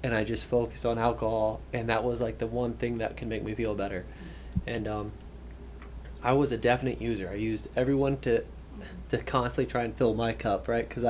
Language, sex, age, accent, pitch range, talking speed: English, male, 20-39, American, 105-125 Hz, 210 wpm